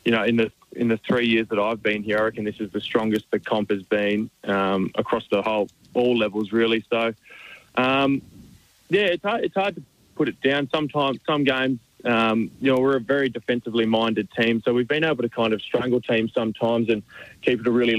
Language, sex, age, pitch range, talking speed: English, male, 20-39, 110-125 Hz, 220 wpm